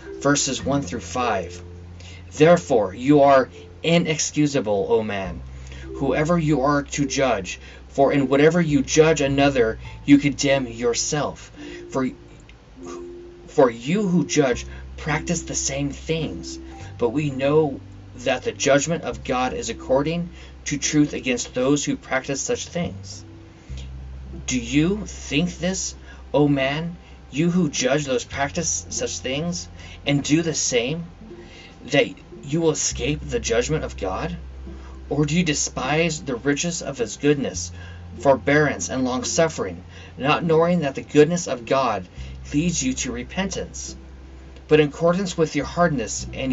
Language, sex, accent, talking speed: English, male, American, 135 wpm